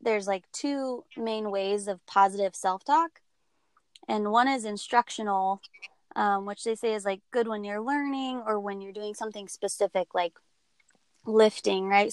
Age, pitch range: 20-39, 200-240 Hz